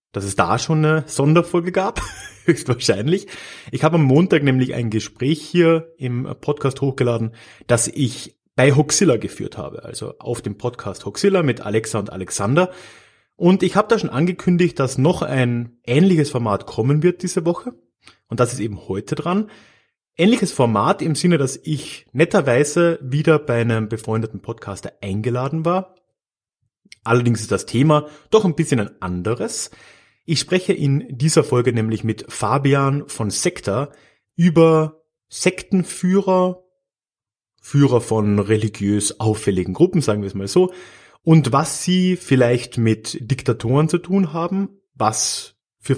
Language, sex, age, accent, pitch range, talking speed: German, male, 30-49, German, 110-165 Hz, 145 wpm